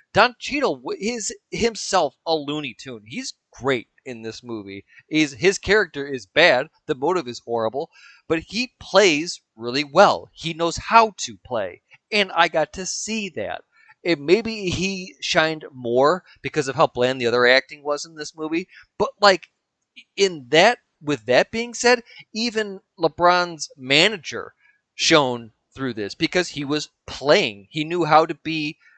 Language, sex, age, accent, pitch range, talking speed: English, male, 40-59, American, 130-190 Hz, 155 wpm